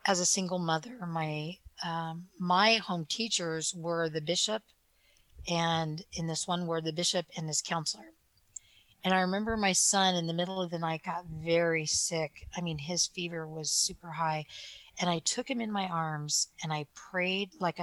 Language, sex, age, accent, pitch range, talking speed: English, female, 40-59, American, 155-185 Hz, 180 wpm